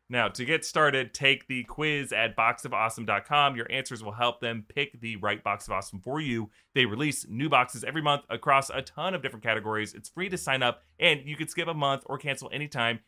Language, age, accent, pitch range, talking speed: English, 30-49, American, 120-180 Hz, 220 wpm